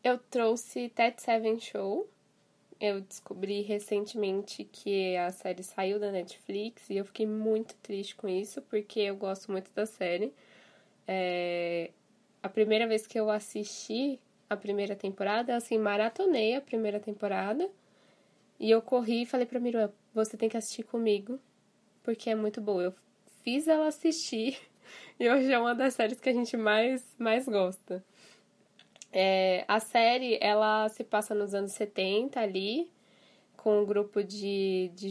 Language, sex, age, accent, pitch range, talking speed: Portuguese, female, 10-29, Brazilian, 200-235 Hz, 150 wpm